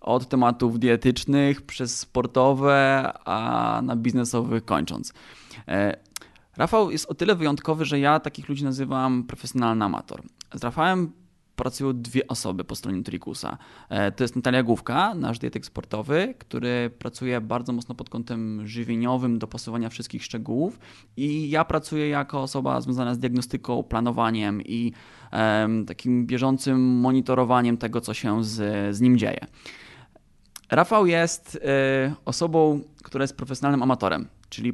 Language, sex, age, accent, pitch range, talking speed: Polish, male, 20-39, native, 115-140 Hz, 130 wpm